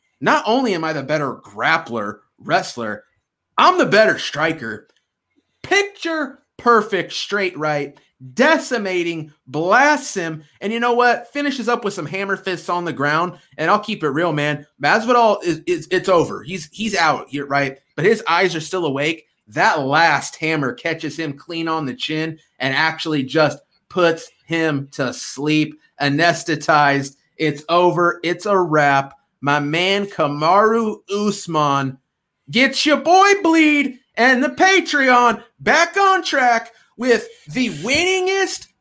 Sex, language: male, English